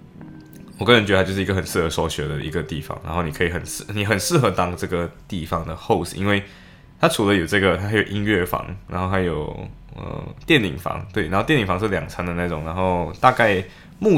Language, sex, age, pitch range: Chinese, male, 10-29, 90-105 Hz